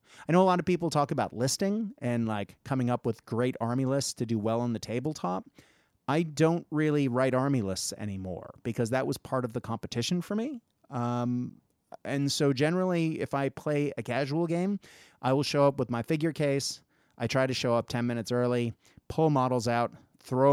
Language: English